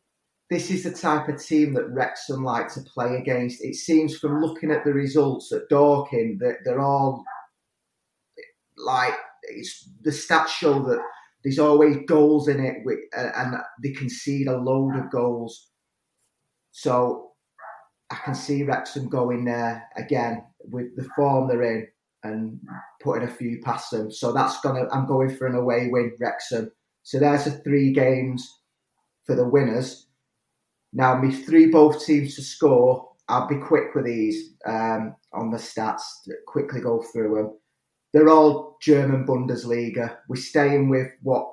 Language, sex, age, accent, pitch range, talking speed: English, male, 30-49, British, 120-150 Hz, 155 wpm